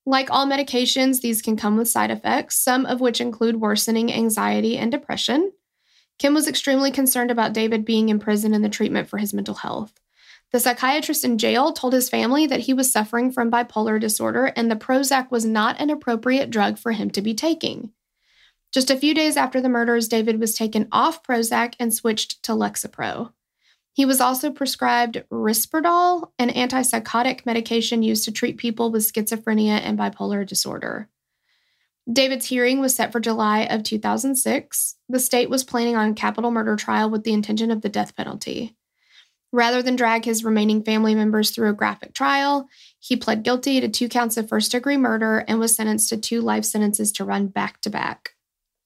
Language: English